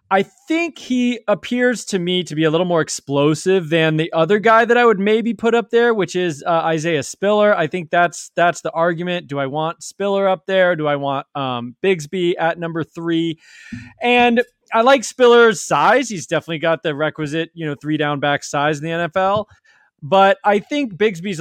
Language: English